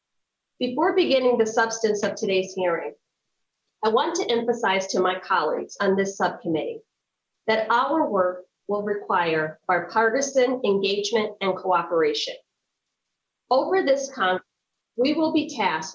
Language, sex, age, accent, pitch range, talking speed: English, female, 40-59, American, 190-245 Hz, 125 wpm